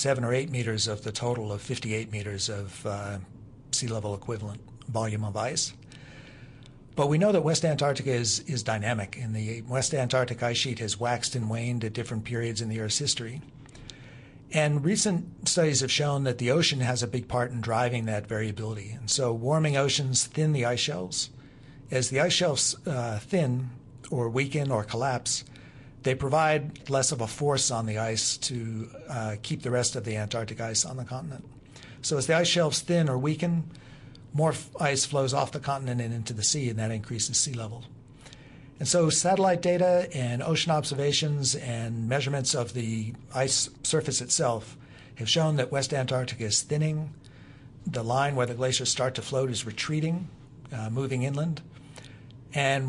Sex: male